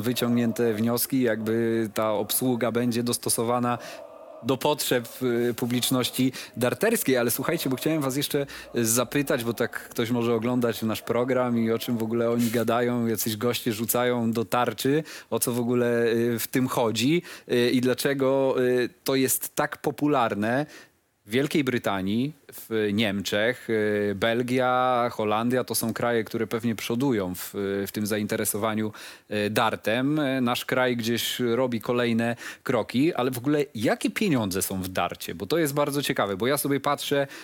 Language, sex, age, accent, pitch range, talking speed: Polish, male, 30-49, native, 115-130 Hz, 145 wpm